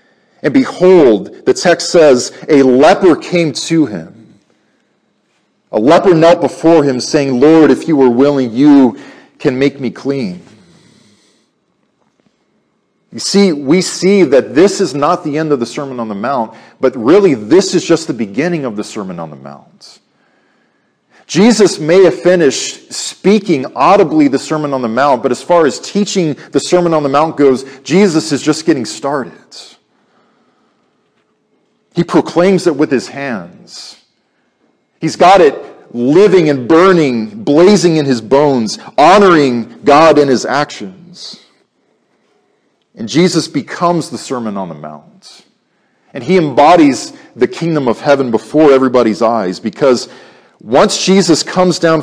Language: English